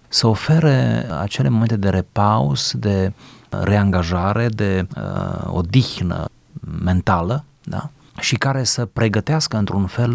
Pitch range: 95-125 Hz